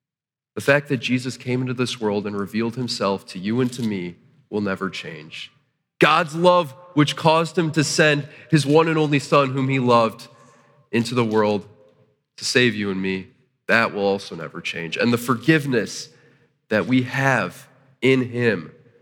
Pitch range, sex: 115-140 Hz, male